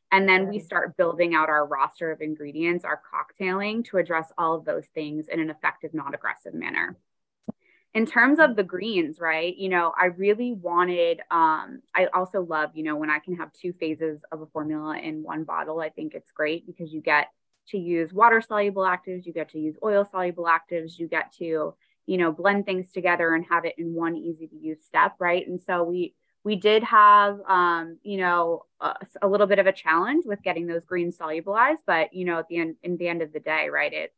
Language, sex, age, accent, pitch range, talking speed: English, female, 20-39, American, 160-195 Hz, 210 wpm